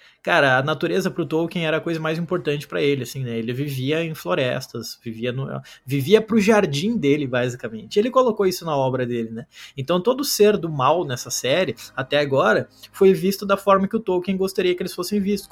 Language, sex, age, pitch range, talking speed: Portuguese, male, 20-39, 135-180 Hz, 205 wpm